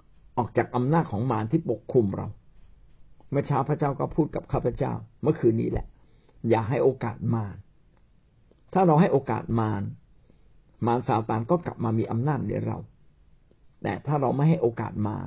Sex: male